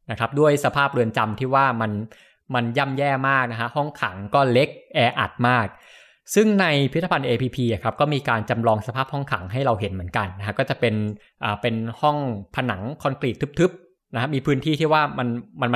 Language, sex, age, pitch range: Thai, male, 20-39, 115-145 Hz